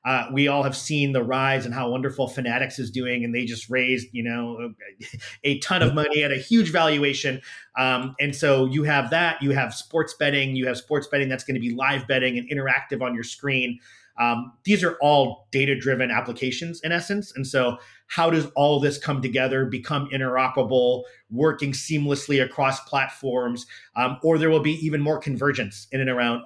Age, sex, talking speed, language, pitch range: 30-49, male, 195 wpm, English, 120-140 Hz